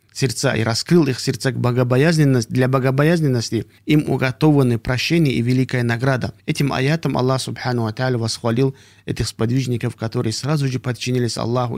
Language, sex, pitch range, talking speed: Russian, male, 110-130 Hz, 145 wpm